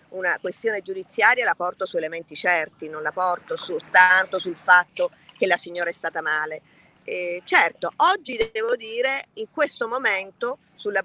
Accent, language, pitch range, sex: native, Italian, 170-245 Hz, female